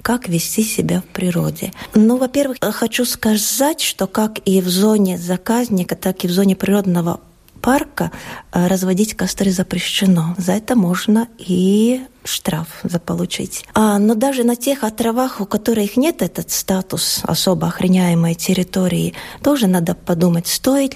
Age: 20-39